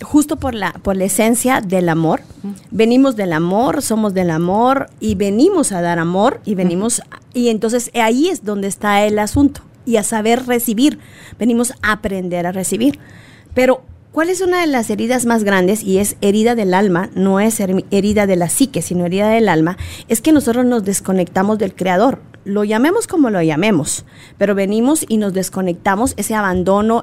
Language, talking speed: Spanish, 180 wpm